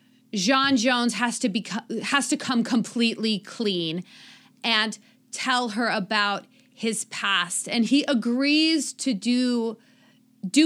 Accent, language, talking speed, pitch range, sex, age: American, English, 125 wpm, 215-265 Hz, female, 30-49